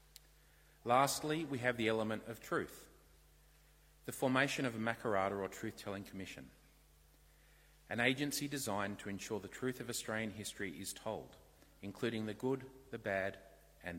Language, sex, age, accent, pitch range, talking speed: English, male, 40-59, Australian, 95-120 Hz, 140 wpm